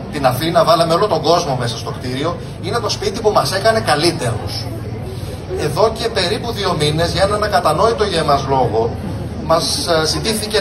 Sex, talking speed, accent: male, 165 wpm, native